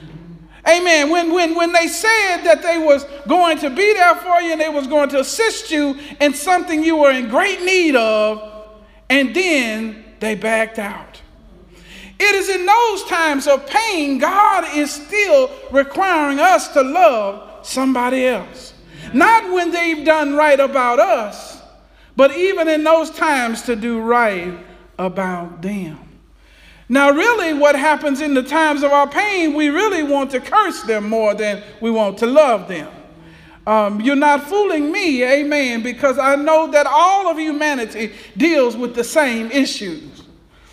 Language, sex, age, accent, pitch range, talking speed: English, male, 50-69, American, 240-335 Hz, 160 wpm